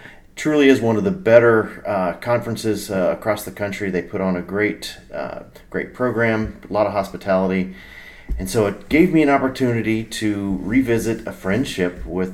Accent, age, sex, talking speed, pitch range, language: American, 40-59, male, 175 wpm, 90-115 Hz, English